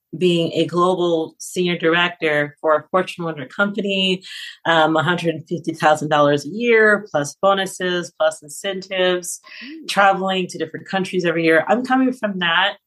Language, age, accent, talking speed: English, 30-49, American, 130 wpm